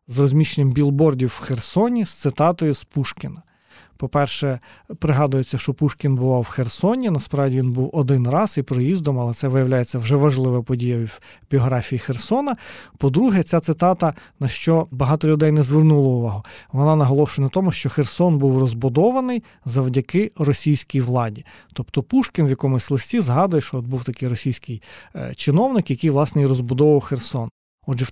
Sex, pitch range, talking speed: male, 130-155 Hz, 155 wpm